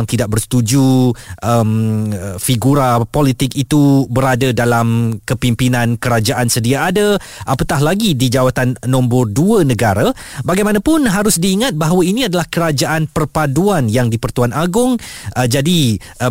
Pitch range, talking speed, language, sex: 115-160 Hz, 125 wpm, Malay, male